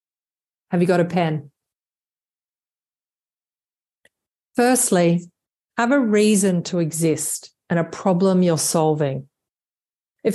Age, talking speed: 40-59, 100 wpm